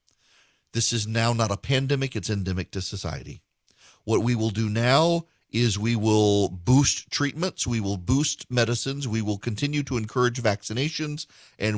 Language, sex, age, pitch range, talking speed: English, male, 40-59, 100-130 Hz, 160 wpm